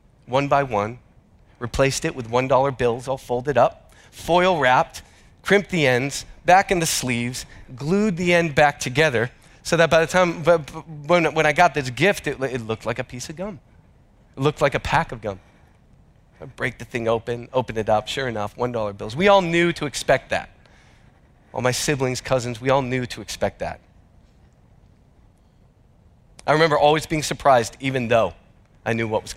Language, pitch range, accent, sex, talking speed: English, 120-160 Hz, American, male, 180 wpm